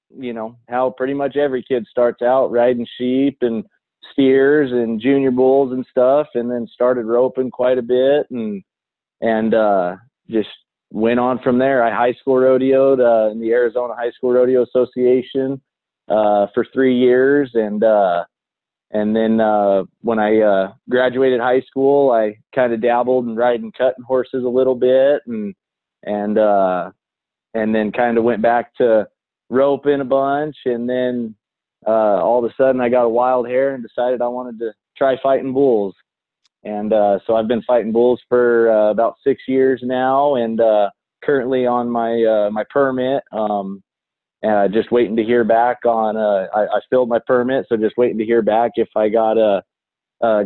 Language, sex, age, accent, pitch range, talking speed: English, male, 20-39, American, 110-130 Hz, 175 wpm